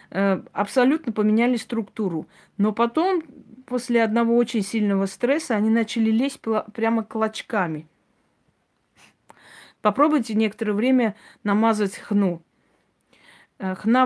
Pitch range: 190-230 Hz